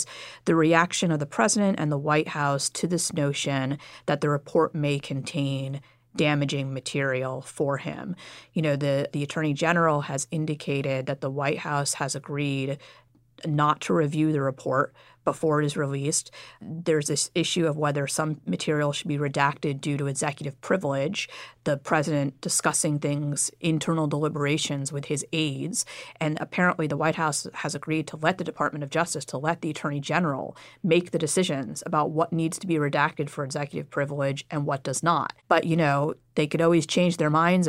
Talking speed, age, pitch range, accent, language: 175 wpm, 30-49, 140-160 Hz, American, English